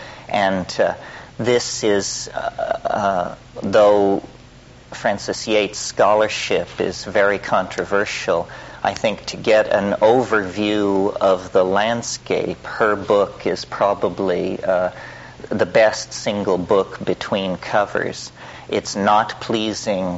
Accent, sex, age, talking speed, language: American, male, 50-69, 105 wpm, English